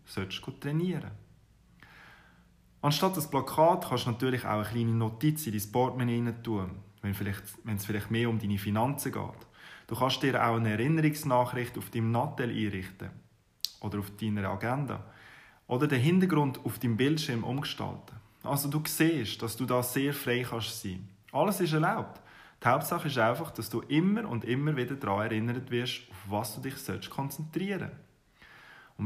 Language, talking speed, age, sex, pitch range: German, 165 wpm, 20-39, male, 110-140 Hz